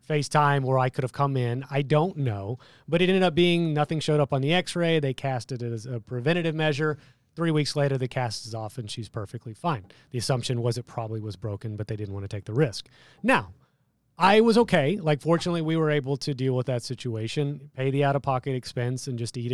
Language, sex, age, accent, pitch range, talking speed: English, male, 30-49, American, 120-155 Hz, 230 wpm